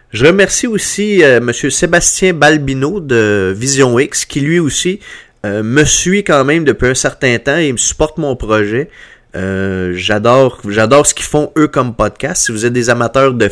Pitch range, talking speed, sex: 115-155 Hz, 180 wpm, male